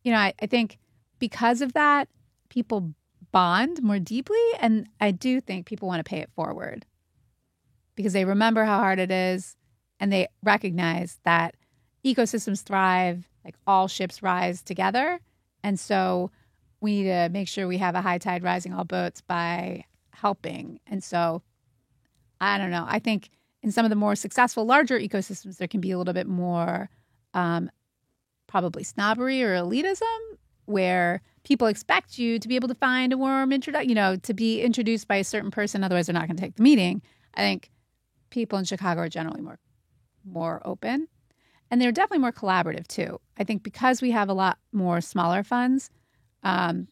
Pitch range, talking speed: 180-230 Hz, 175 wpm